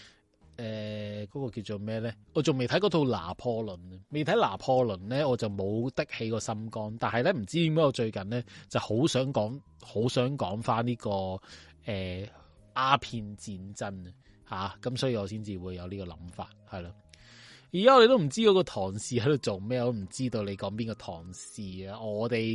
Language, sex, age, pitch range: Chinese, male, 20-39, 100-125 Hz